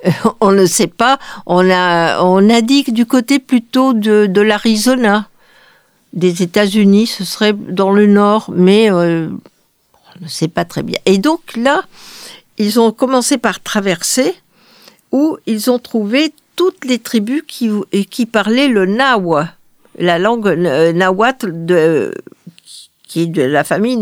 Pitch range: 180-245 Hz